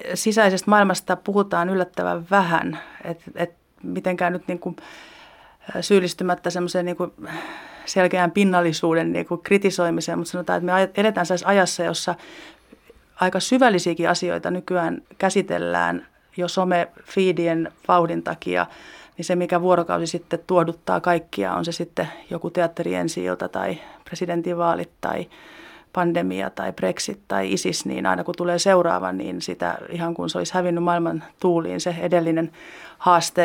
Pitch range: 165-180 Hz